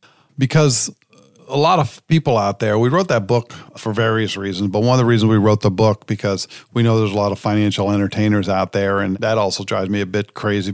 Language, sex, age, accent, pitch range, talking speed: English, male, 50-69, American, 100-120 Hz, 235 wpm